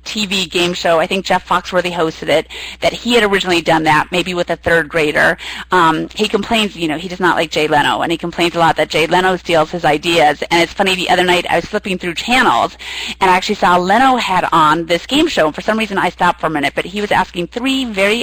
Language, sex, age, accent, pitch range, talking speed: English, female, 30-49, American, 170-235 Hz, 255 wpm